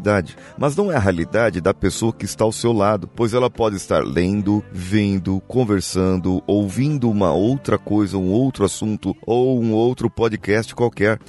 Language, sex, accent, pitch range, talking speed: Portuguese, male, Brazilian, 85-110 Hz, 165 wpm